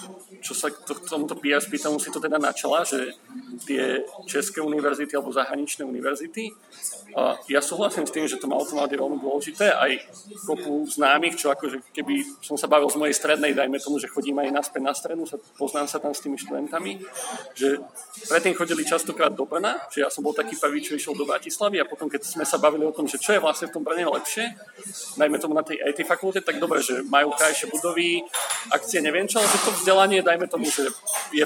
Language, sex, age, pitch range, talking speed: Slovak, male, 40-59, 145-195 Hz, 200 wpm